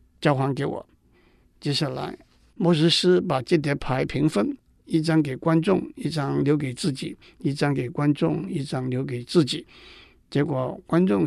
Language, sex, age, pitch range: Chinese, male, 60-79, 135-170 Hz